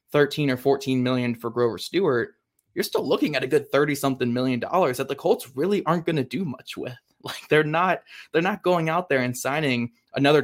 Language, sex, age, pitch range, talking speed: English, male, 20-39, 120-145 Hz, 220 wpm